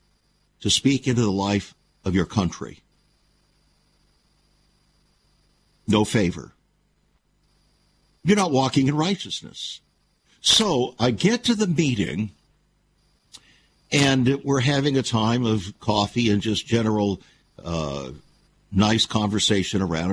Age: 60-79